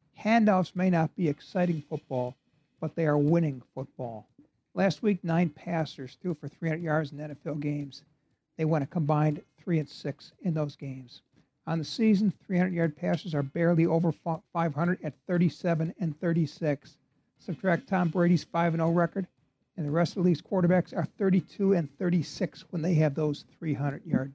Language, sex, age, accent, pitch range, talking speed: English, male, 60-79, American, 150-185 Hz, 170 wpm